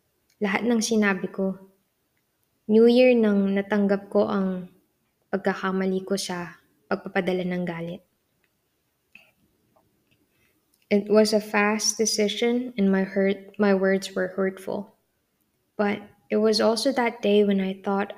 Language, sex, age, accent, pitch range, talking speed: English, female, 20-39, Filipino, 195-215 Hz, 120 wpm